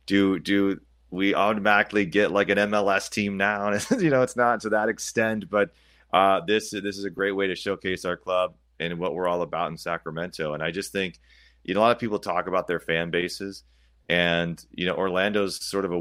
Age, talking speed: 30-49, 220 wpm